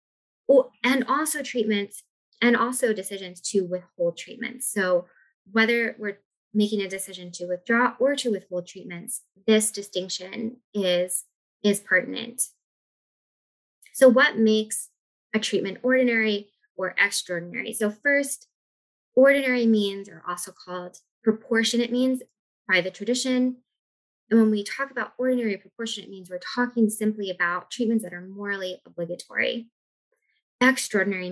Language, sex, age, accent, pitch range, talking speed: English, female, 20-39, American, 190-240 Hz, 125 wpm